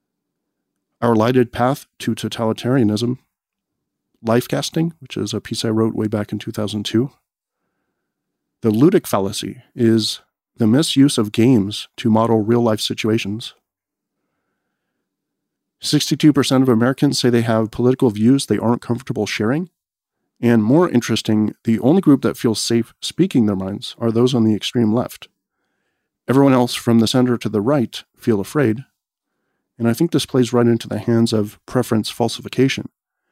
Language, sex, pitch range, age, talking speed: English, male, 110-130 Hz, 40-59, 145 wpm